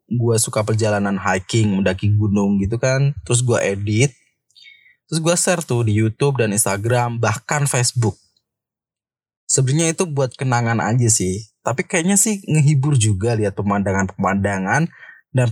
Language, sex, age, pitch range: Indonesian, male, 20-39, 110-145 Hz